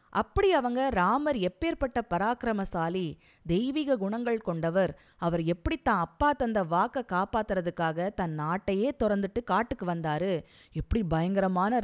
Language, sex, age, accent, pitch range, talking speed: Tamil, female, 20-39, native, 180-255 Hz, 105 wpm